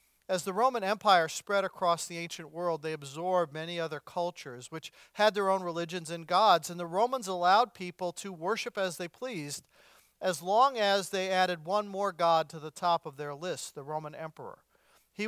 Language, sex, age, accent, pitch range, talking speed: English, male, 50-69, American, 165-200 Hz, 195 wpm